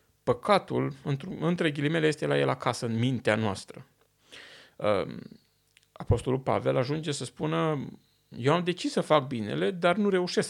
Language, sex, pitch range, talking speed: Romanian, male, 125-170 Hz, 145 wpm